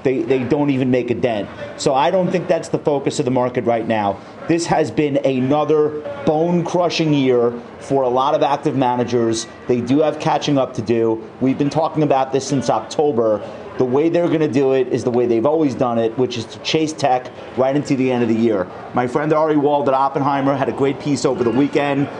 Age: 30-49